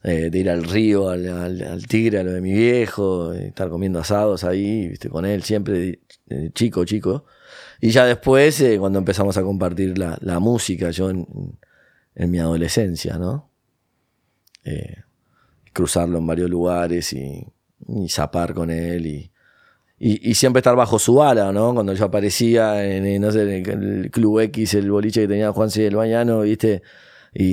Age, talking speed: 20-39, 170 wpm